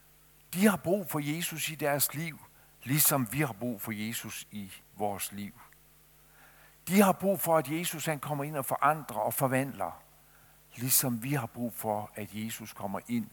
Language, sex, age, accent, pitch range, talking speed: Danish, male, 60-79, native, 110-150 Hz, 175 wpm